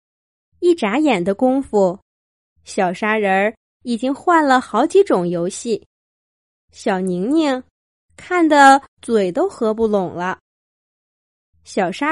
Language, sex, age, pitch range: Chinese, female, 20-39, 190-300 Hz